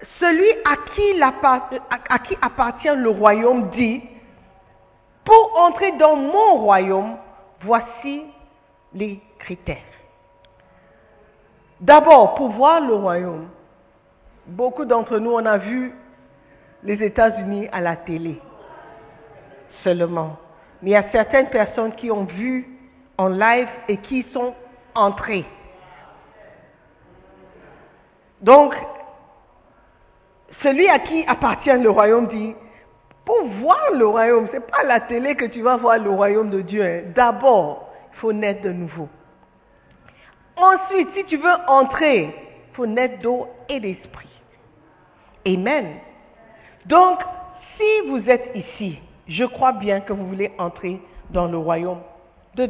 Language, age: French, 50-69